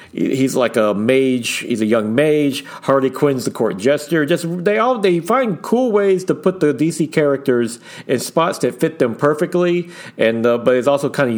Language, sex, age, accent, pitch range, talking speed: English, male, 40-59, American, 120-175 Hz, 200 wpm